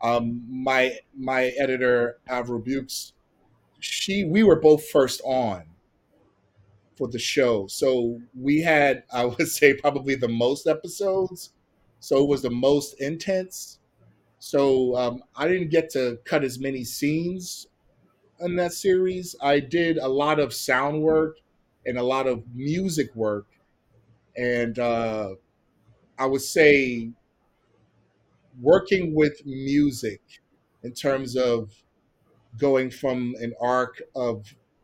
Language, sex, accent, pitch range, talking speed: English, male, American, 115-140 Hz, 125 wpm